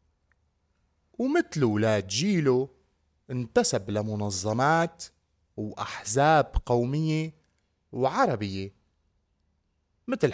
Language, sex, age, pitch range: Arabic, male, 30-49, 100-155 Hz